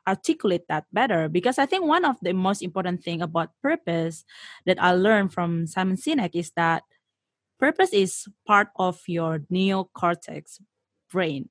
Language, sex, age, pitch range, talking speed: Indonesian, female, 20-39, 175-225 Hz, 150 wpm